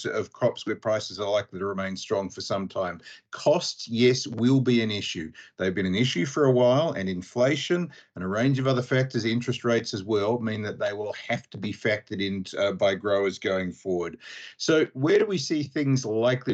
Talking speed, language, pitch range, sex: 205 wpm, English, 100-135 Hz, male